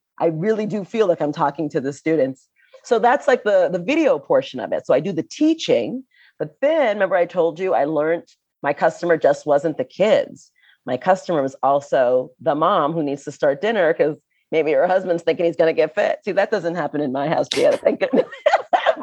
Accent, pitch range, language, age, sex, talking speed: American, 150-230 Hz, English, 40-59, female, 220 wpm